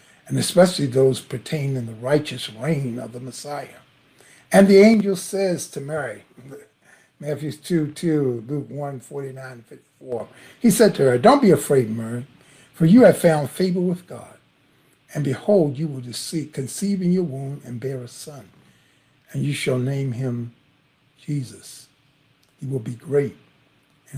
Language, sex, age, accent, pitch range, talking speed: English, male, 60-79, American, 130-160 Hz, 155 wpm